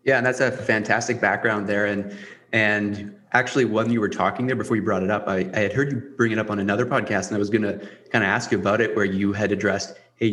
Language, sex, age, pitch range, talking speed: English, male, 30-49, 100-115 Hz, 265 wpm